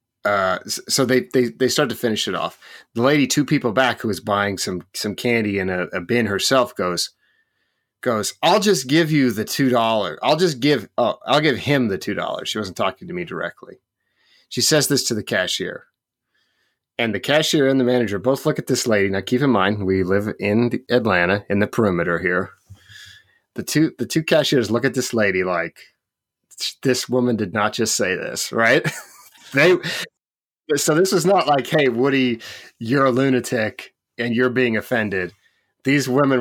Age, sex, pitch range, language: 30-49, male, 105-155 Hz, English